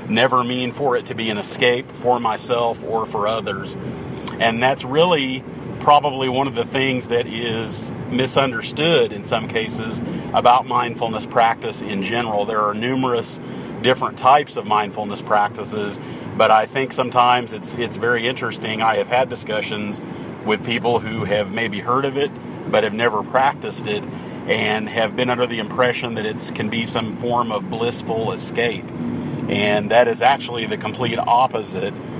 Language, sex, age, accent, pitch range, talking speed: English, male, 40-59, American, 115-125 Hz, 160 wpm